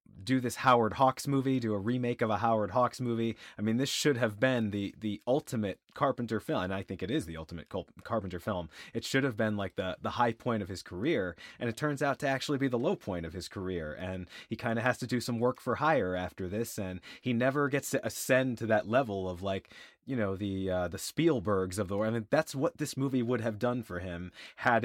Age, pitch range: 30-49, 100-125 Hz